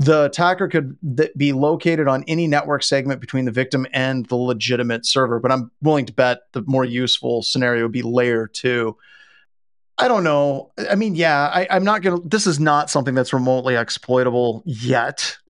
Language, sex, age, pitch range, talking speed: English, male, 30-49, 130-170 Hz, 185 wpm